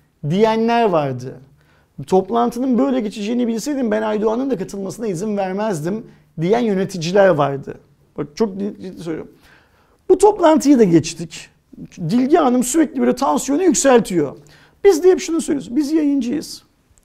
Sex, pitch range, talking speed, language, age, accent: male, 160-230 Hz, 125 wpm, Turkish, 50-69, native